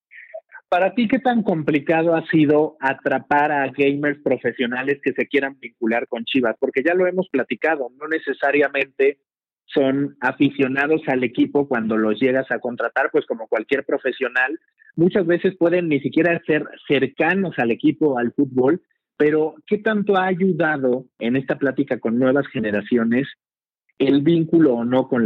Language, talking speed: Spanish, 150 wpm